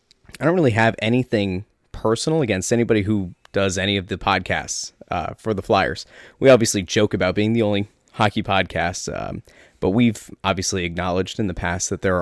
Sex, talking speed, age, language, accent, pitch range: male, 180 wpm, 20-39, English, American, 95-120 Hz